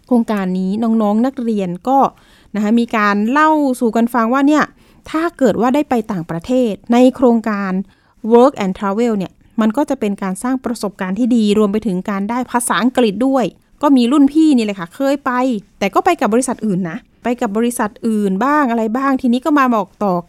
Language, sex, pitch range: Thai, female, 200-255 Hz